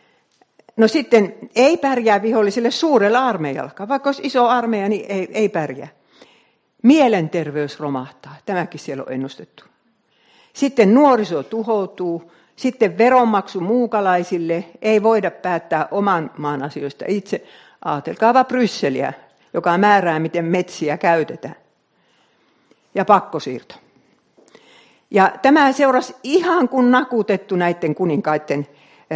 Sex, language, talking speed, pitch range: female, Finnish, 105 wpm, 165-235 Hz